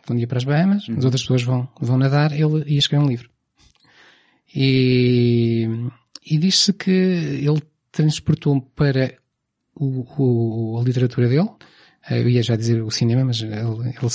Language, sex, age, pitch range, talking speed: Portuguese, male, 20-39, 120-140 Hz, 145 wpm